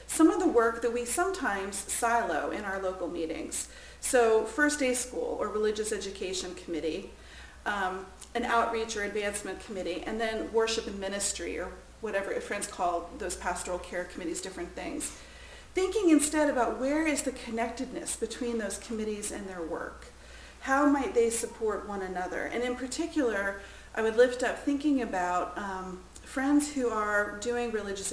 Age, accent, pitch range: 40-59, American, 190-255 Hz